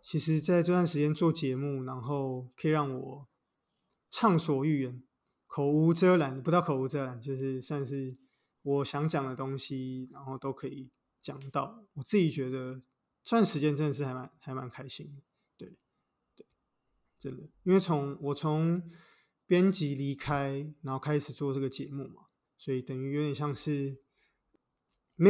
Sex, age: male, 20-39